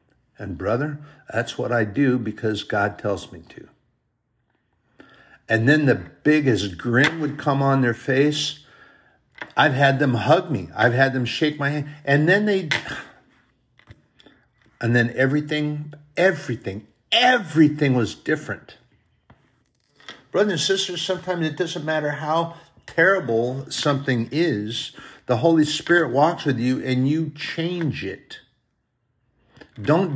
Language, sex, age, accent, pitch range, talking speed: English, male, 50-69, American, 115-150 Hz, 125 wpm